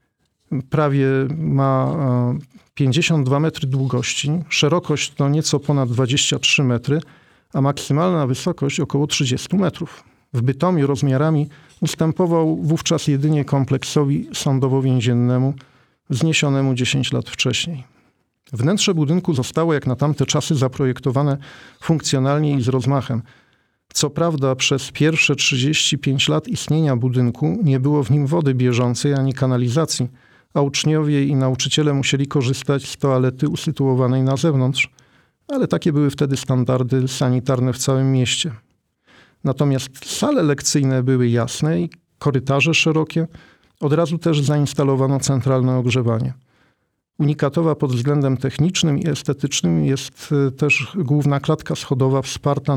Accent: native